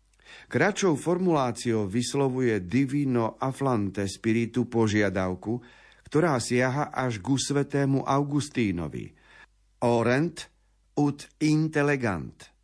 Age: 50-69